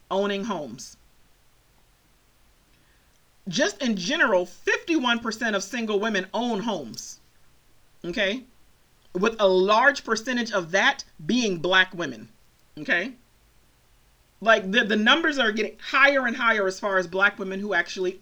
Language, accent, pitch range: English, American, 185-250 Hz